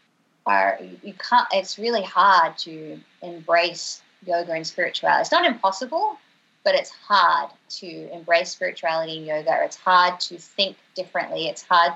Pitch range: 165-195 Hz